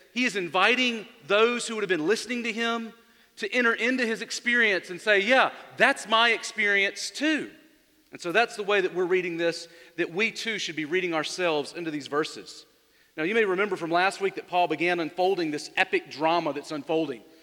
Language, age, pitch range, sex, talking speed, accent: English, 40-59, 185-235 Hz, male, 200 wpm, American